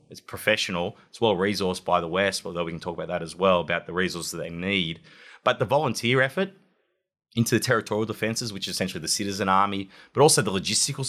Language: English